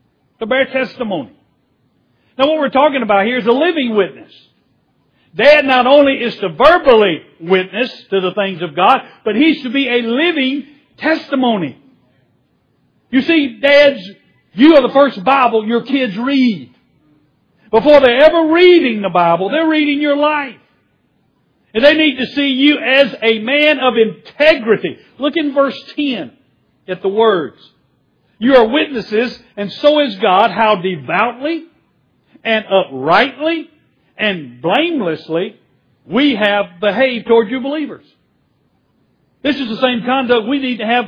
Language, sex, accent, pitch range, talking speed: English, male, American, 225-290 Hz, 145 wpm